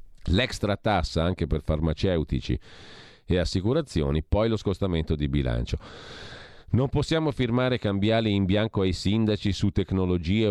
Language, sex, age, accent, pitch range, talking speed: Italian, male, 40-59, native, 80-100 Hz, 125 wpm